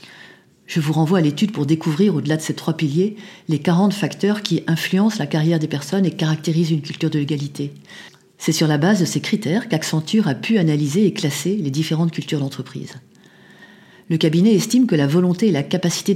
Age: 40-59